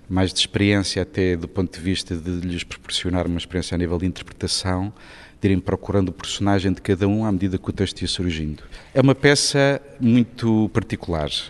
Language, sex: Portuguese, male